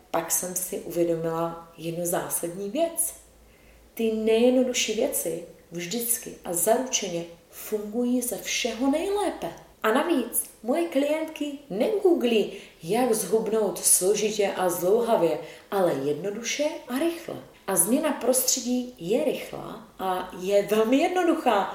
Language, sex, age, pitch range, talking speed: Czech, female, 30-49, 185-260 Hz, 110 wpm